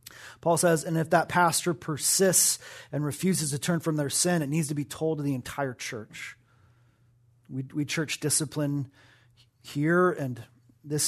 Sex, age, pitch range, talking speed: male, 30-49, 125-155 Hz, 160 wpm